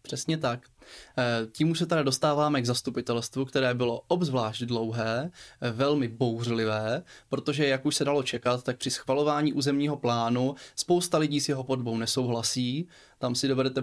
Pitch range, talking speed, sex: 120-145 Hz, 150 wpm, male